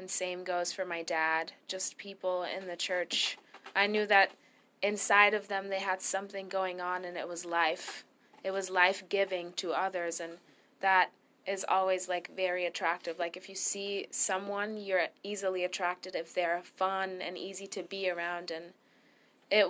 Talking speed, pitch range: 175 wpm, 180-195 Hz